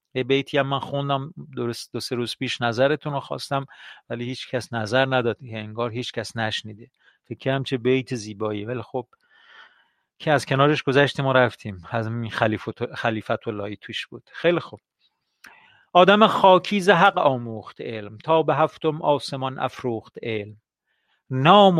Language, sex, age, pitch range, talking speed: Persian, male, 40-59, 115-155 Hz, 155 wpm